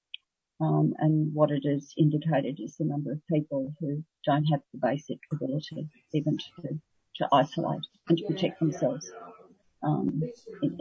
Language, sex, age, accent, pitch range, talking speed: English, female, 40-59, Australian, 145-165 Hz, 150 wpm